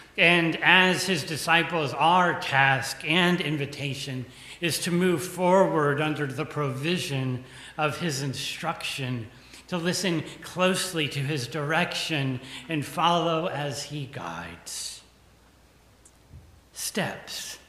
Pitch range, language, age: 140-180 Hz, English, 40-59